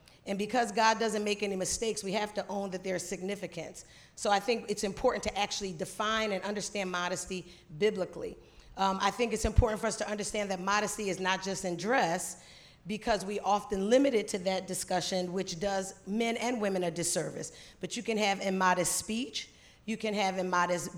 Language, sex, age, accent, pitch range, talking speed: English, female, 40-59, American, 190-225 Hz, 195 wpm